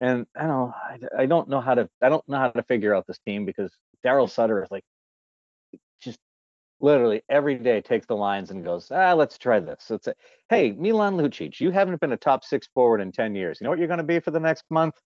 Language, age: English, 40-59